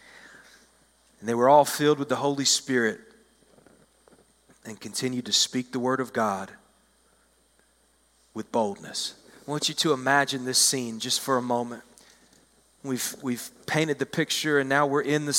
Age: 40-59